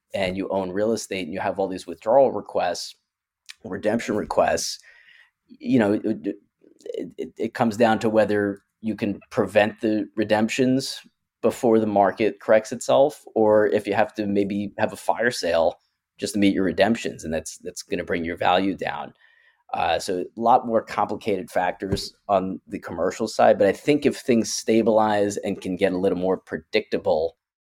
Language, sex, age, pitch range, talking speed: English, male, 30-49, 95-120 Hz, 175 wpm